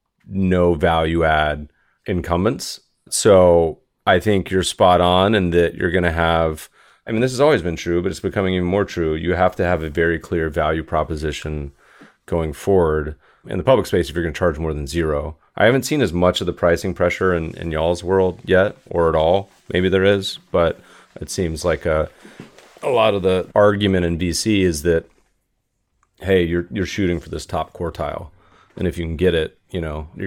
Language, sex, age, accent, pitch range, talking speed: English, male, 30-49, American, 80-95 Hz, 205 wpm